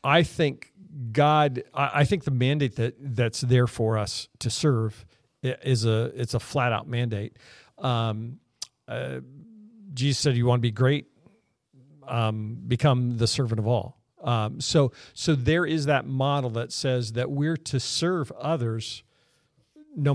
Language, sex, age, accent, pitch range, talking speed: English, male, 50-69, American, 120-145 Hz, 150 wpm